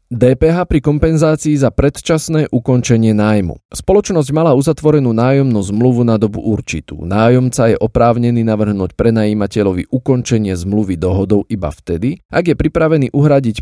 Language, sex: Slovak, male